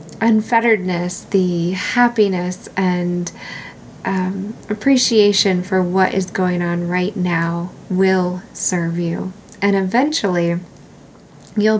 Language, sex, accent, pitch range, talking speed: English, female, American, 180-220 Hz, 95 wpm